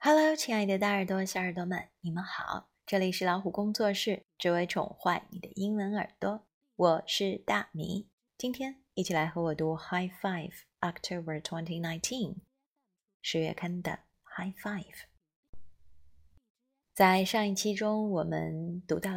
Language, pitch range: Chinese, 165-210 Hz